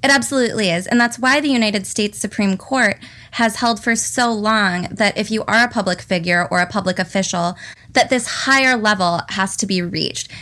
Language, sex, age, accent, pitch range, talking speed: English, female, 20-39, American, 185-230 Hz, 200 wpm